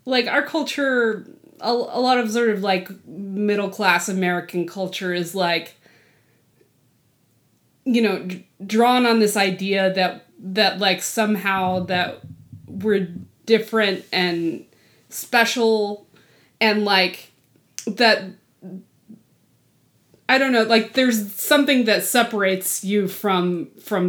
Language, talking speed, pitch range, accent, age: English, 115 wpm, 185-225 Hz, American, 20-39